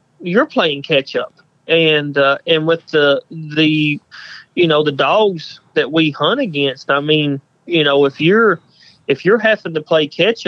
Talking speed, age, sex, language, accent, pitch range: 170 wpm, 30-49, male, English, American, 145-165 Hz